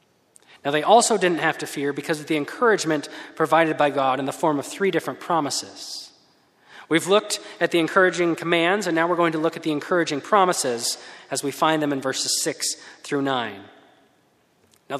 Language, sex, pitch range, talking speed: English, male, 155-200 Hz, 190 wpm